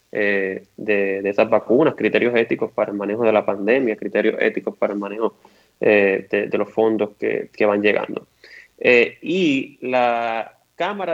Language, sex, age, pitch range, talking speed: Spanish, male, 20-39, 110-130 Hz, 165 wpm